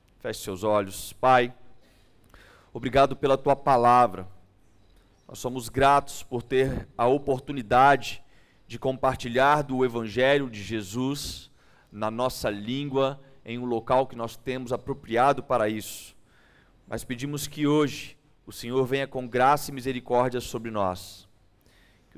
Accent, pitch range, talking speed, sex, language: Brazilian, 115-150 Hz, 125 wpm, male, Portuguese